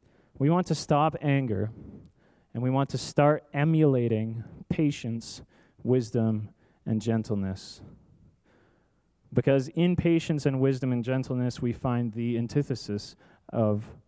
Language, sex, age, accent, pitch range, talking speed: English, male, 20-39, American, 115-145 Hz, 115 wpm